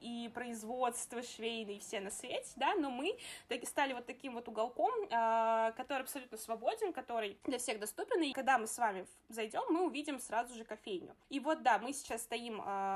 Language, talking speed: Russian, 175 wpm